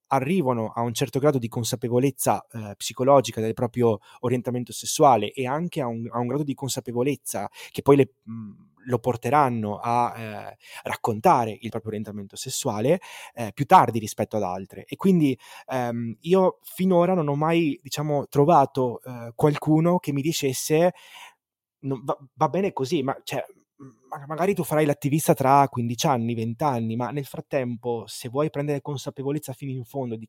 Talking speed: 155 wpm